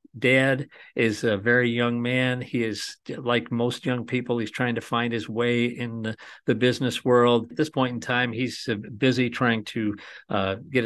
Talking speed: 190 wpm